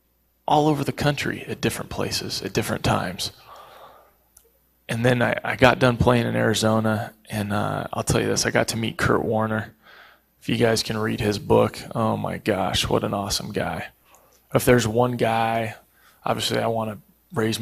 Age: 20-39